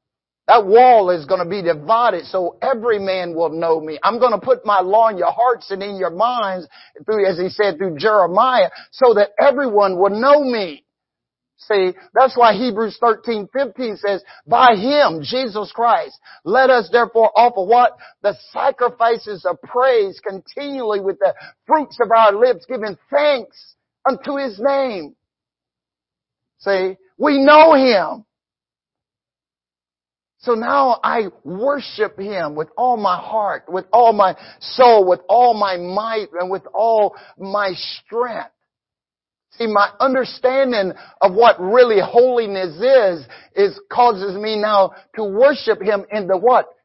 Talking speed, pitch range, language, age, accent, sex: 145 wpm, 190-250 Hz, English, 50-69, American, male